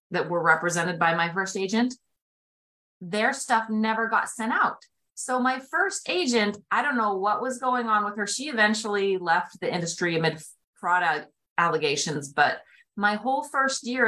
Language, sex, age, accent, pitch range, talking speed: English, female, 30-49, American, 170-225 Hz, 165 wpm